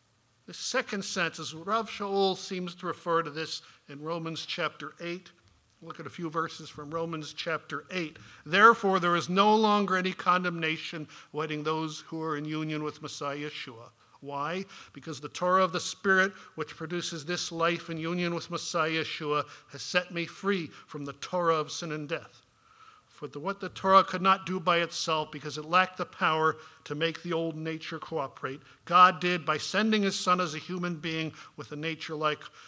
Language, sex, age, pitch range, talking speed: English, male, 50-69, 150-180 Hz, 185 wpm